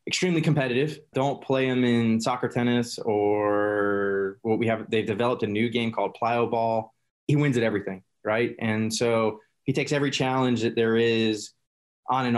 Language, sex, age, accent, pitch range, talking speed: English, male, 20-39, American, 110-125 Hz, 175 wpm